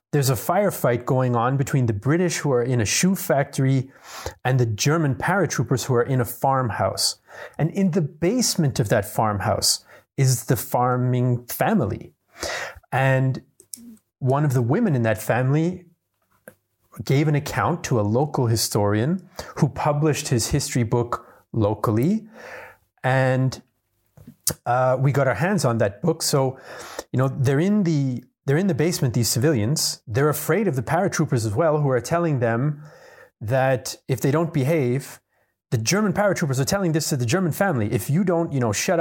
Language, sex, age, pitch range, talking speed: English, male, 30-49, 125-165 Hz, 165 wpm